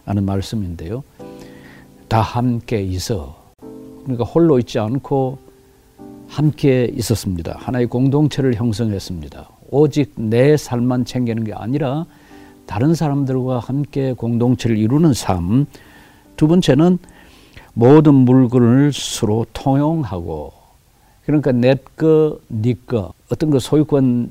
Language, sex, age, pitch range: Korean, male, 50-69, 100-135 Hz